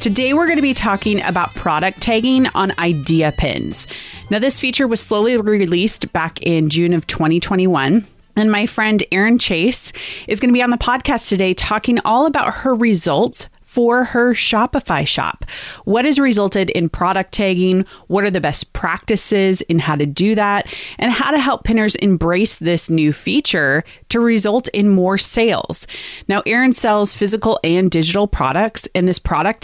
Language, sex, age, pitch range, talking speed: English, female, 30-49, 175-230 Hz, 170 wpm